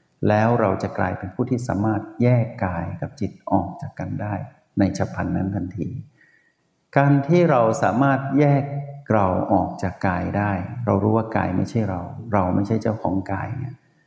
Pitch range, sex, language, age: 100-130 Hz, male, Thai, 60-79